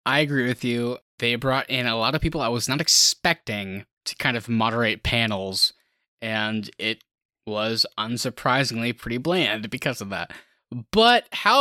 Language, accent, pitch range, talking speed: English, American, 125-195 Hz, 160 wpm